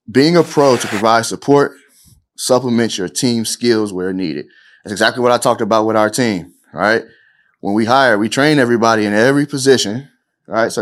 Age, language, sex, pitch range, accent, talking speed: 30-49, English, male, 100-125 Hz, American, 185 wpm